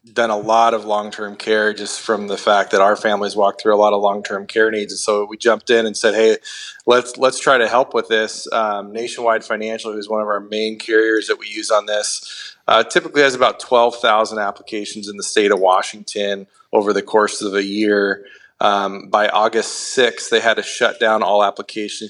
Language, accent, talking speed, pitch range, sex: English, American, 210 wpm, 100-115 Hz, male